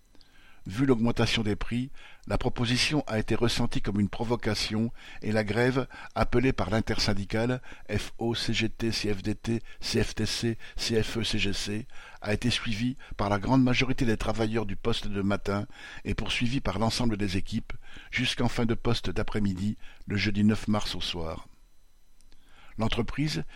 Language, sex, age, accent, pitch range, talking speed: French, male, 60-79, French, 105-120 Hz, 140 wpm